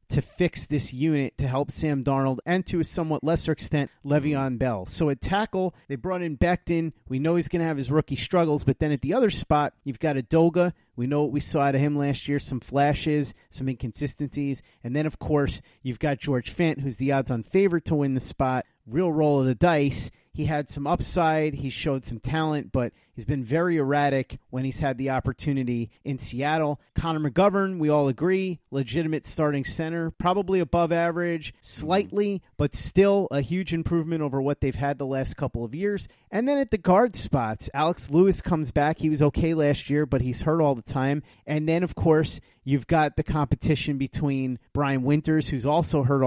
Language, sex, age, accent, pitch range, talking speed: English, male, 30-49, American, 135-165 Hz, 205 wpm